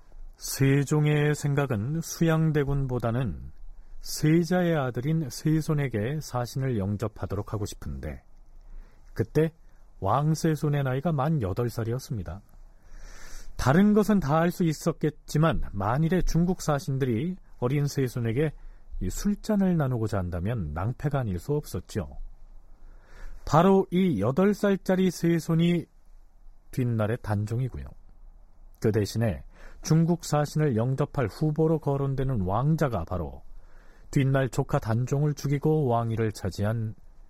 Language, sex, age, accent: Korean, male, 40-59, native